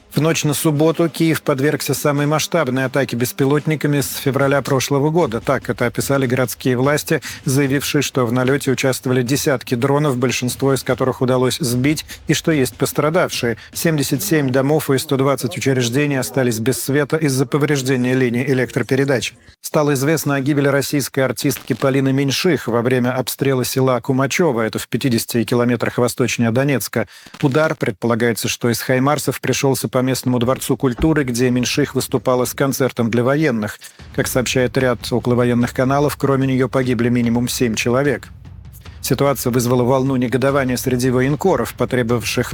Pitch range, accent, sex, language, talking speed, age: 120-140 Hz, native, male, Russian, 140 wpm, 40-59